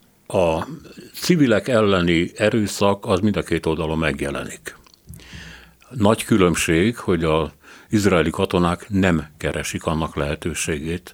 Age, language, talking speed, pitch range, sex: 60-79, Hungarian, 110 wpm, 80-110 Hz, male